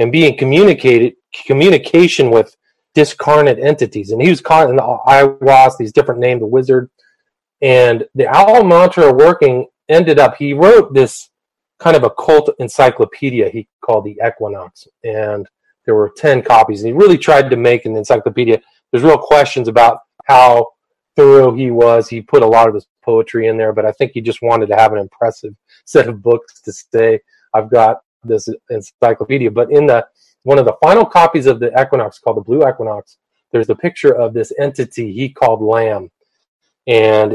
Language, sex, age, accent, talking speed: English, male, 40-59, American, 180 wpm